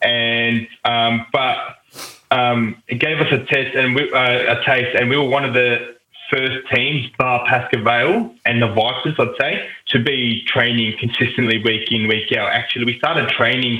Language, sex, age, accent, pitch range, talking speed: English, male, 20-39, Australian, 110-125 Hz, 185 wpm